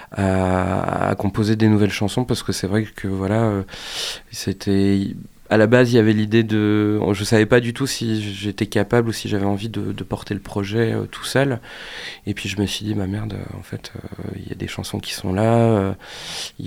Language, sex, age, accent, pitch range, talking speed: French, male, 20-39, French, 100-115 Hz, 225 wpm